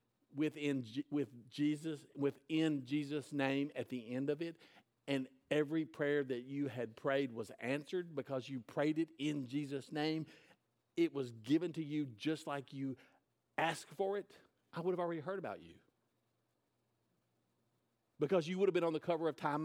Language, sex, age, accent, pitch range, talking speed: English, male, 50-69, American, 140-175 Hz, 170 wpm